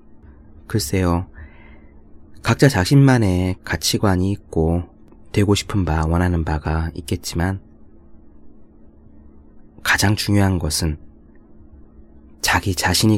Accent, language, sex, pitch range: native, Korean, male, 75-100 Hz